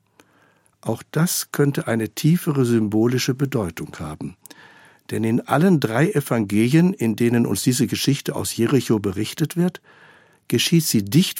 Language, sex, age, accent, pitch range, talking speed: German, male, 60-79, German, 110-155 Hz, 130 wpm